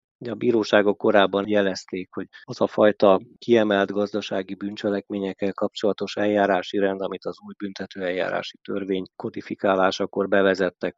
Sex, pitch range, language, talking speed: male, 90-100 Hz, Hungarian, 120 wpm